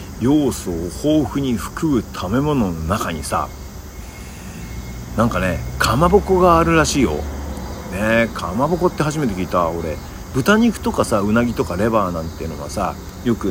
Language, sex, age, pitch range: Japanese, male, 50-69, 85-130 Hz